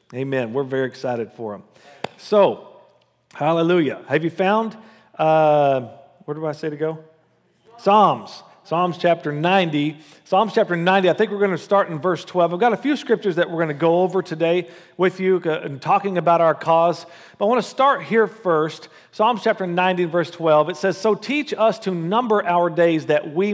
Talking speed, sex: 195 wpm, male